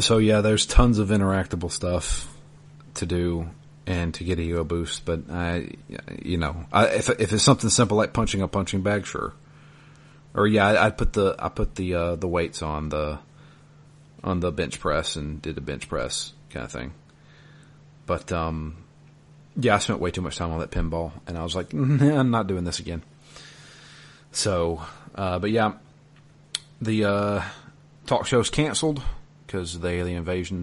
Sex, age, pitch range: male, 40-59, 90-145 Hz